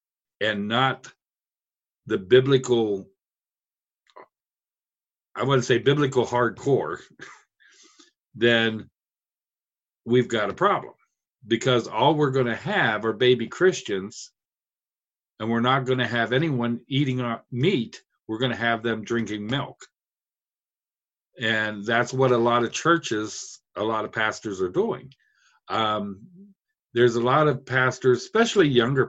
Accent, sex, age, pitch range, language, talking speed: American, male, 50-69, 115-140 Hz, English, 125 wpm